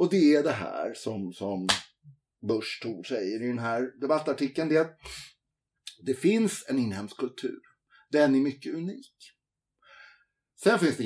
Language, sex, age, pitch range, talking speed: Swedish, male, 60-79, 115-150 Hz, 145 wpm